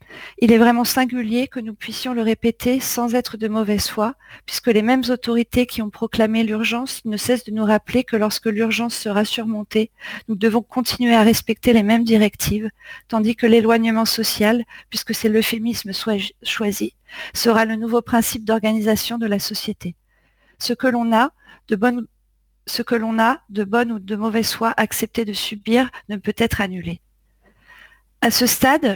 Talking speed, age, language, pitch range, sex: 170 wpm, 40-59, French, 215-240 Hz, female